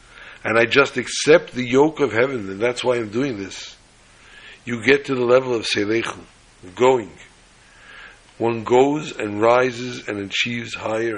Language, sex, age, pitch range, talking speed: English, male, 60-79, 105-130 Hz, 155 wpm